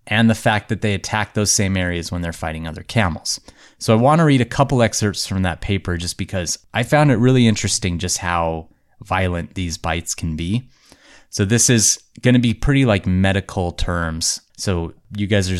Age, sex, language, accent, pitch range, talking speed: 30-49, male, English, American, 90-110 Hz, 205 wpm